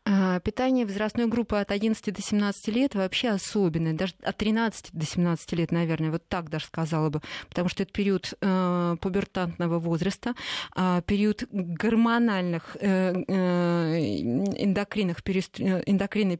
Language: Russian